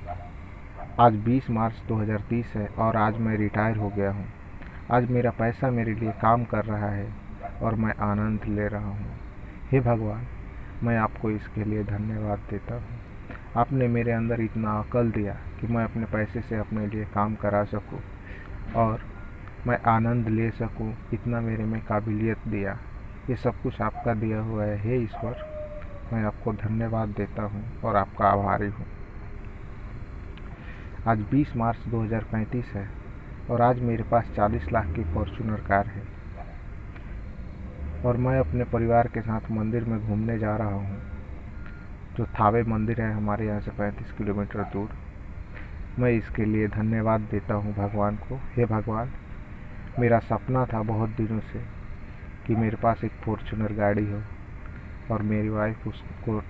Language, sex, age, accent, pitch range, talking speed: Hindi, male, 40-59, native, 100-115 Hz, 155 wpm